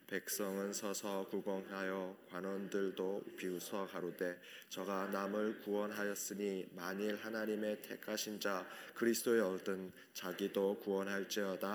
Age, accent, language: 20-39, native, Korean